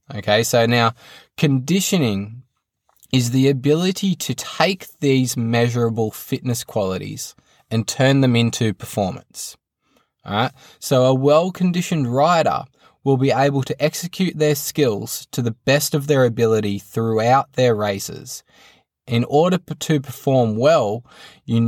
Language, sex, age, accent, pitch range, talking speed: English, male, 20-39, Australian, 115-140 Hz, 125 wpm